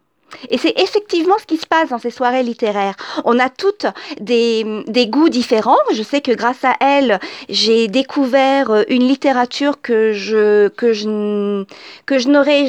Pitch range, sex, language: 220-285 Hz, female, French